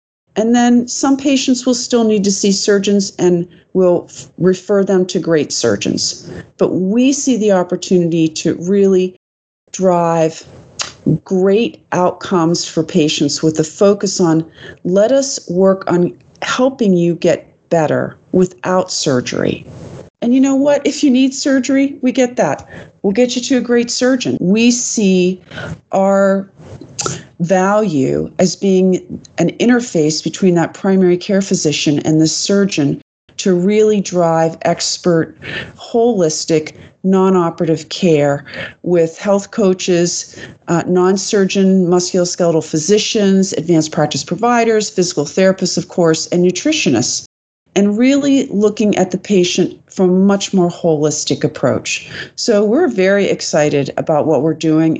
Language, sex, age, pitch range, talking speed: English, female, 40-59, 165-210 Hz, 135 wpm